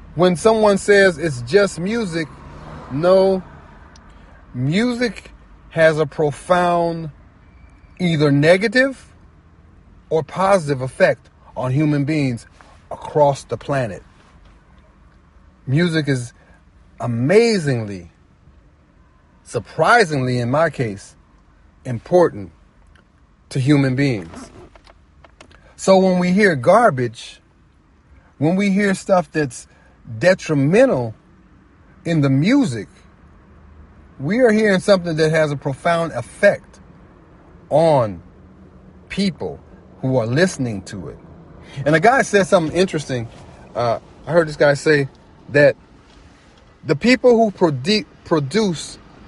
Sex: male